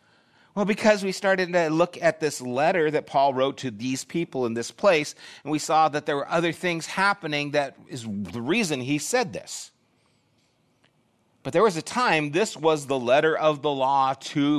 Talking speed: 195 wpm